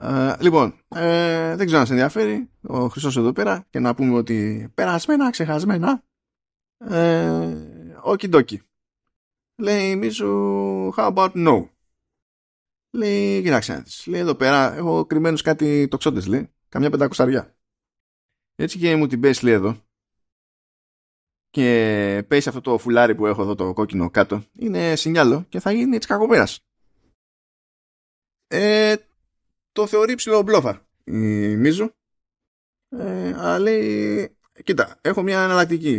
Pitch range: 110-175 Hz